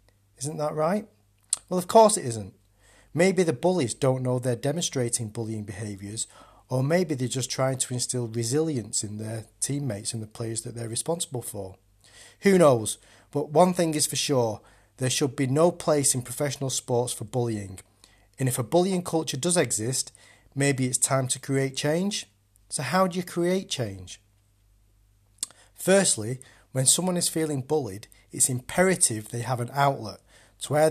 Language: English